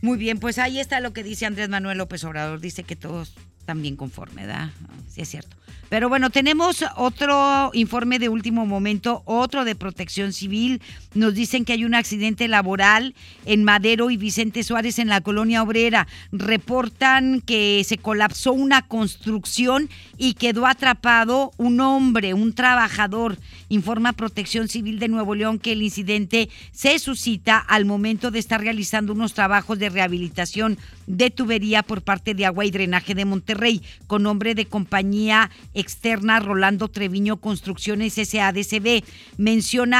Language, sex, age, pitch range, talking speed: Spanish, female, 50-69, 200-230 Hz, 155 wpm